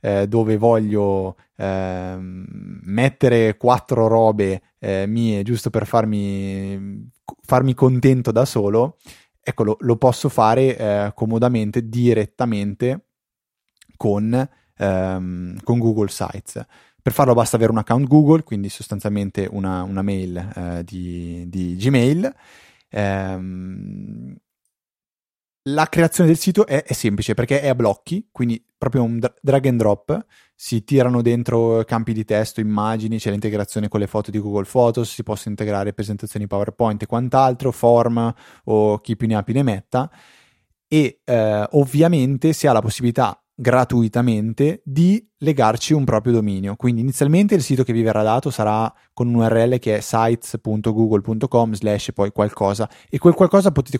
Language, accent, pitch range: Italian, native, 105-130 Hz